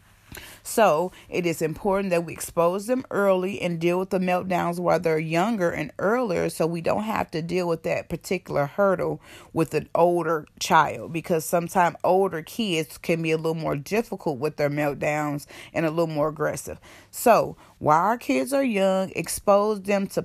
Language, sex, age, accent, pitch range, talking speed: English, female, 30-49, American, 155-180 Hz, 180 wpm